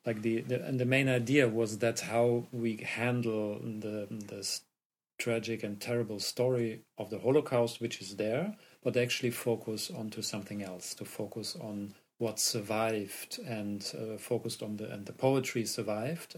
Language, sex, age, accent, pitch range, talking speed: German, male, 40-59, German, 105-120 Hz, 160 wpm